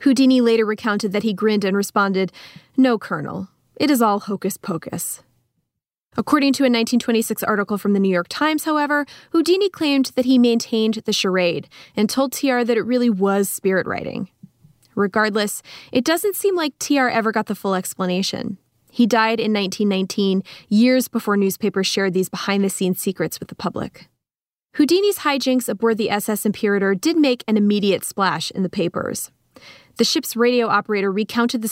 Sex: female